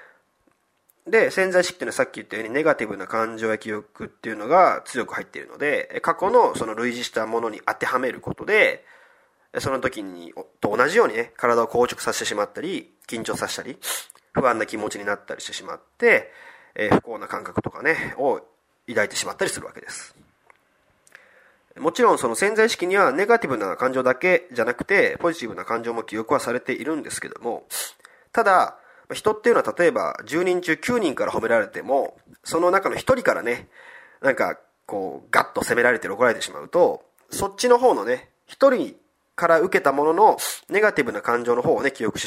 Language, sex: Japanese, male